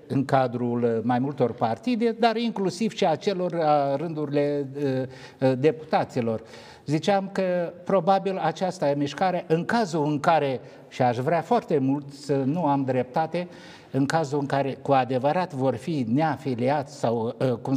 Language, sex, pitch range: Romanian, male, 140-185 Hz